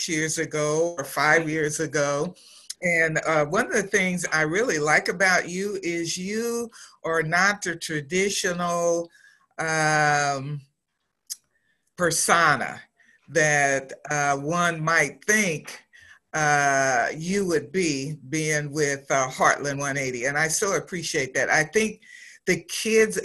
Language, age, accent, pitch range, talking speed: English, 50-69, American, 155-200 Hz, 125 wpm